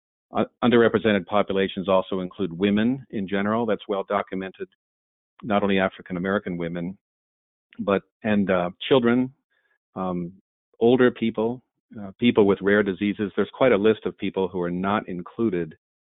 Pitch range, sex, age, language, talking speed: 90-105 Hz, male, 50-69, English, 140 wpm